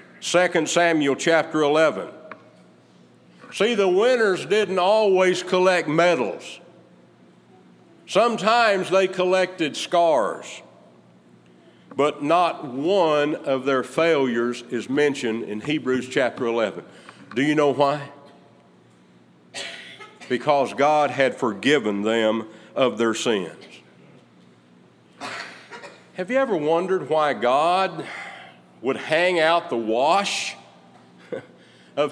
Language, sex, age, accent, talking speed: English, male, 50-69, American, 95 wpm